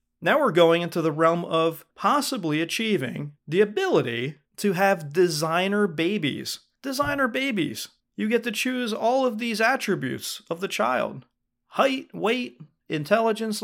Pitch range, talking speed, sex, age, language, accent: 155-220 Hz, 135 wpm, male, 40-59, English, American